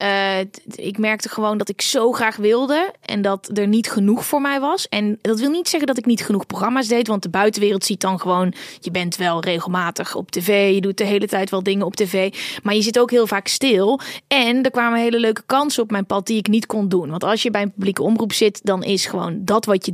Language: Dutch